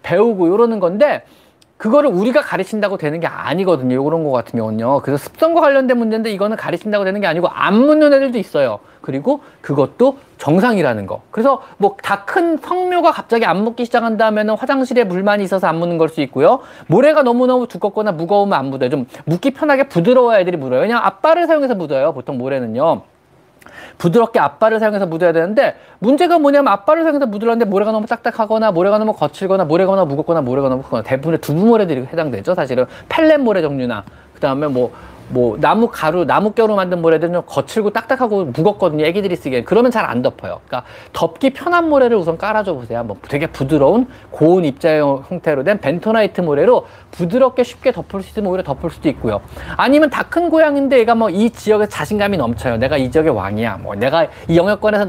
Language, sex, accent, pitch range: Korean, male, native, 165-245 Hz